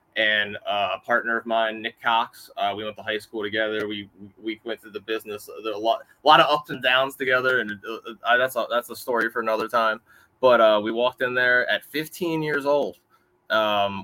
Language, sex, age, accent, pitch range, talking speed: English, male, 20-39, American, 110-140 Hz, 225 wpm